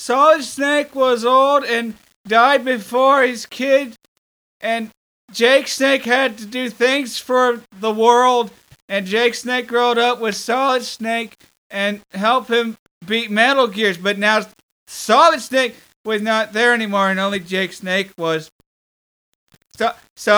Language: English